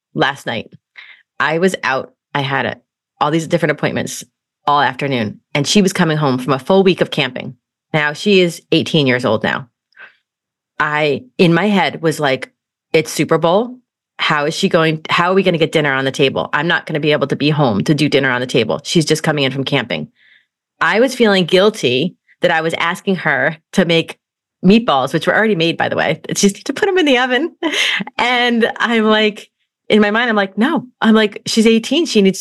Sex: female